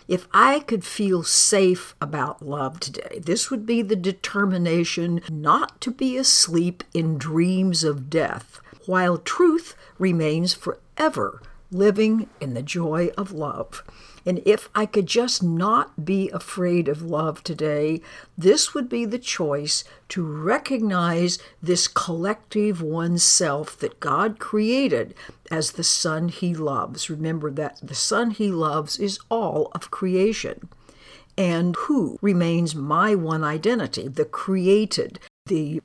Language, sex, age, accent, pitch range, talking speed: English, female, 60-79, American, 155-205 Hz, 130 wpm